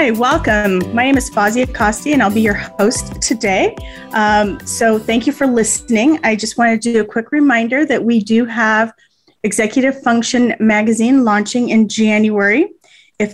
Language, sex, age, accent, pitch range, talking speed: English, female, 30-49, American, 210-245 Hz, 170 wpm